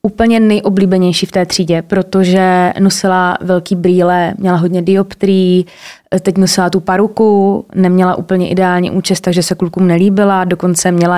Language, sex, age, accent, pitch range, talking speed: Czech, female, 20-39, native, 175-195 Hz, 140 wpm